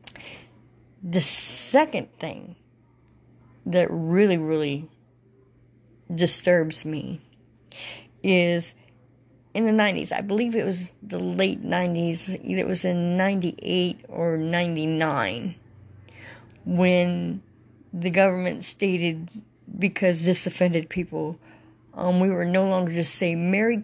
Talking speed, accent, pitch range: 105 wpm, American, 120-180 Hz